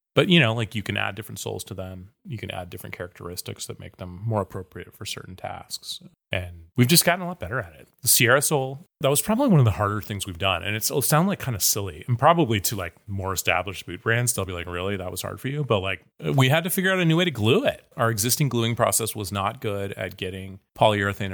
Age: 30-49